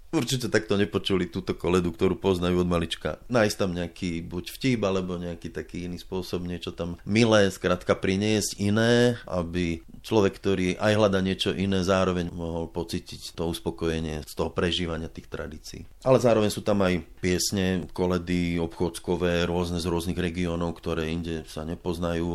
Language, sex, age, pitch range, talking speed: Slovak, male, 30-49, 80-95 Hz, 155 wpm